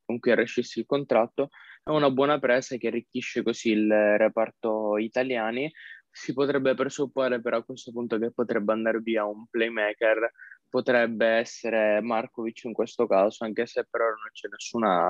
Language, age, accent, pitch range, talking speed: Italian, 20-39, native, 110-125 Hz, 155 wpm